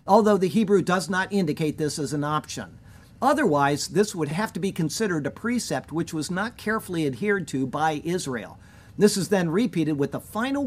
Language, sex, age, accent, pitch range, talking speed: English, male, 50-69, American, 145-205 Hz, 190 wpm